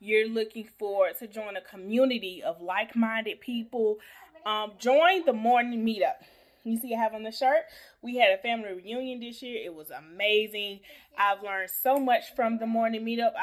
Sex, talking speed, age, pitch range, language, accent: female, 185 wpm, 20-39, 210-250 Hz, English, American